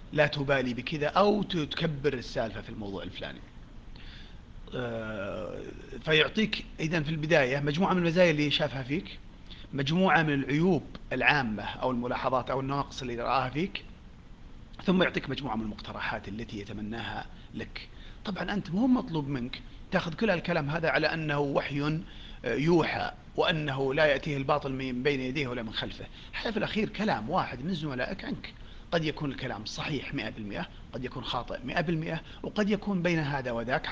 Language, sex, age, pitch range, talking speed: Arabic, male, 40-59, 125-170 Hz, 145 wpm